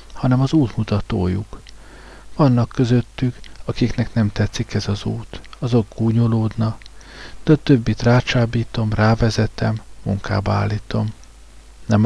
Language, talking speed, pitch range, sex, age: Hungarian, 100 wpm, 105-120 Hz, male, 50-69